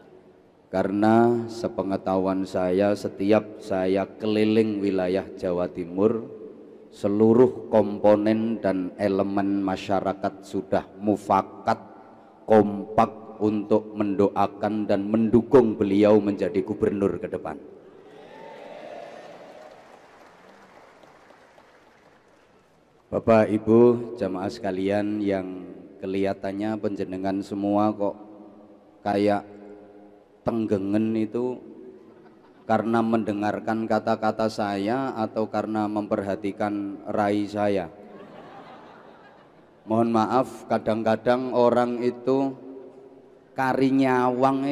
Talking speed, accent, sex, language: 70 wpm, native, male, Indonesian